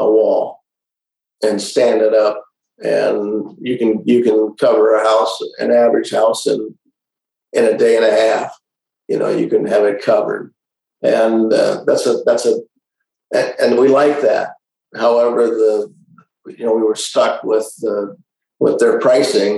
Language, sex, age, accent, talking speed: English, male, 50-69, American, 170 wpm